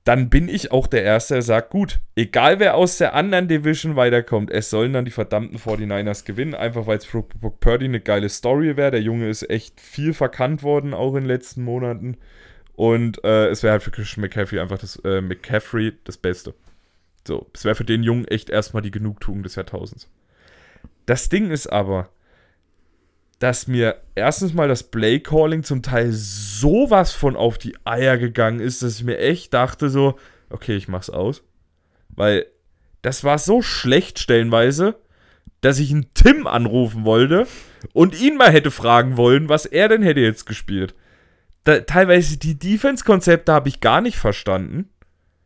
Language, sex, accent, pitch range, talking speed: German, male, German, 105-140 Hz, 180 wpm